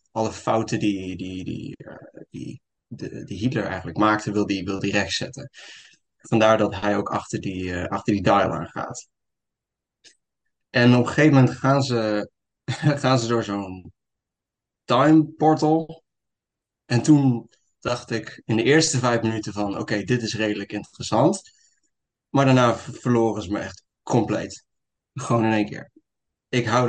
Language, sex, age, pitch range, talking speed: Dutch, male, 20-39, 105-125 Hz, 150 wpm